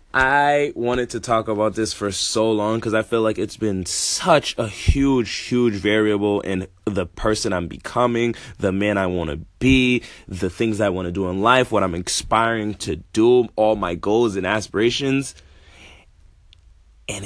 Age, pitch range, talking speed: 20-39, 95-110 Hz, 175 wpm